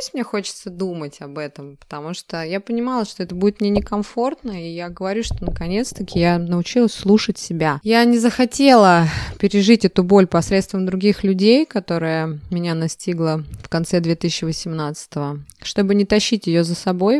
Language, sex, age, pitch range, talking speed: Russian, female, 20-39, 165-205 Hz, 155 wpm